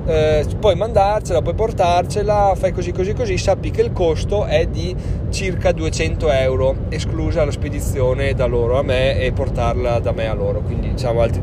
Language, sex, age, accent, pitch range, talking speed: Italian, male, 30-49, native, 110-140 Hz, 180 wpm